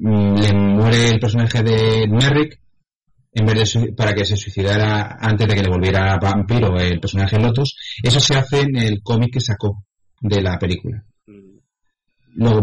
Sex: male